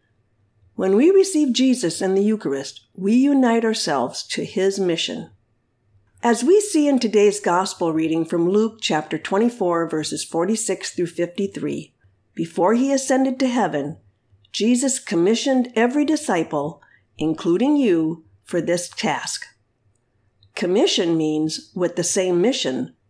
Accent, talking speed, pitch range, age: American, 125 wpm, 155-235 Hz, 50-69